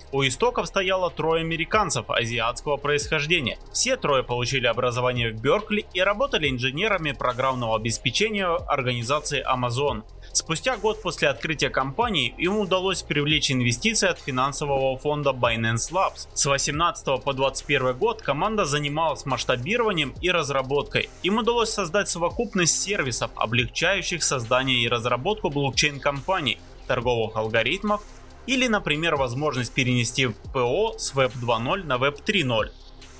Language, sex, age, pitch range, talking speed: Russian, male, 20-39, 130-185 Hz, 125 wpm